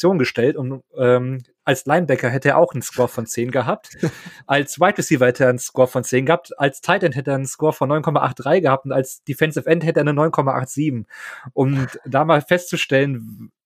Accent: German